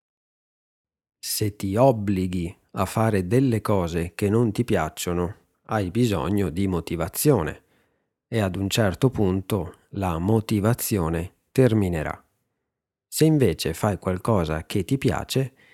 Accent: native